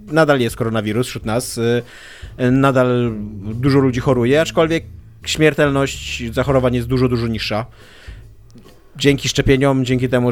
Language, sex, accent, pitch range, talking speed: Polish, male, native, 115-150 Hz, 115 wpm